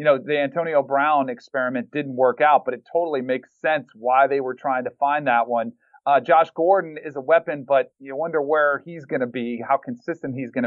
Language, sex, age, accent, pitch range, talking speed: English, male, 40-59, American, 135-185 Hz, 225 wpm